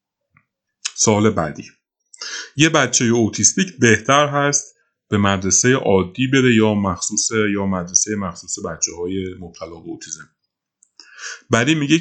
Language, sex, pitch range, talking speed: Persian, male, 90-110 Hz, 105 wpm